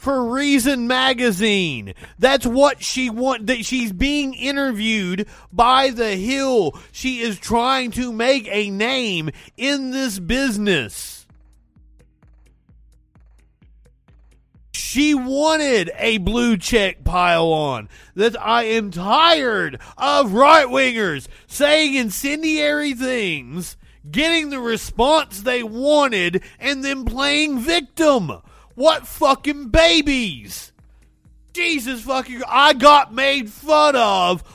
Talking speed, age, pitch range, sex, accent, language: 105 wpm, 40-59, 205-275 Hz, male, American, English